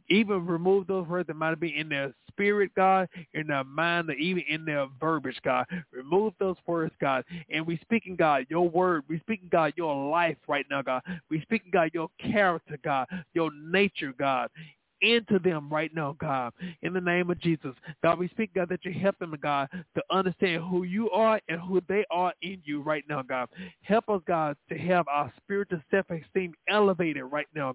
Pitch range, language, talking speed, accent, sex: 145-185 Hz, English, 205 wpm, American, male